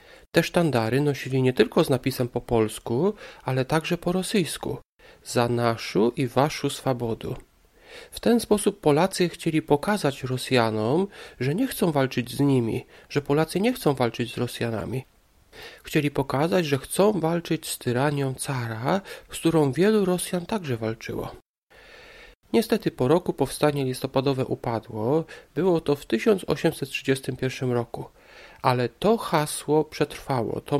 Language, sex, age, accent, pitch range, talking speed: Polish, male, 40-59, native, 125-170 Hz, 135 wpm